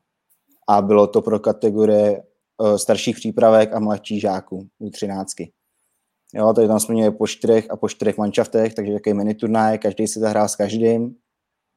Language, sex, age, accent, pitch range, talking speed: Czech, male, 20-39, native, 105-110 Hz, 150 wpm